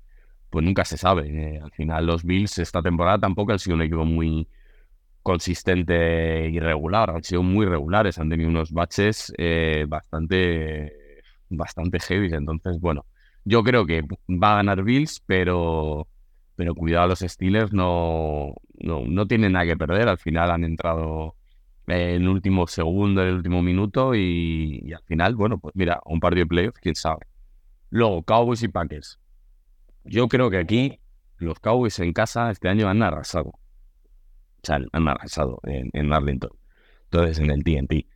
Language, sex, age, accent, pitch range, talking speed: Spanish, male, 30-49, Spanish, 80-95 Hz, 160 wpm